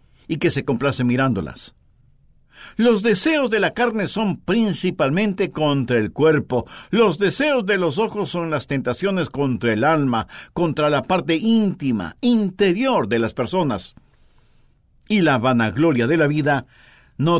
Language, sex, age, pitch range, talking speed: English, male, 60-79, 130-190 Hz, 140 wpm